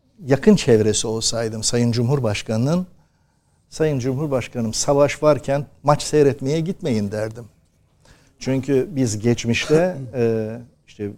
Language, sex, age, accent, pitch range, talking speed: Turkish, male, 60-79, native, 115-150 Hz, 90 wpm